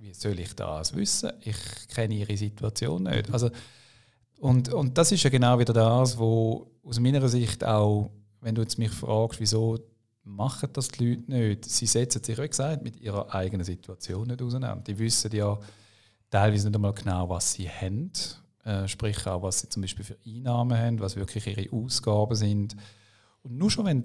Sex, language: male, German